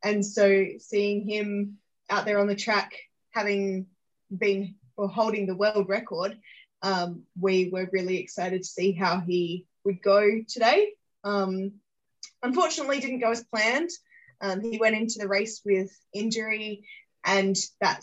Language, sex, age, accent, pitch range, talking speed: English, female, 10-29, Australian, 185-215 Hz, 145 wpm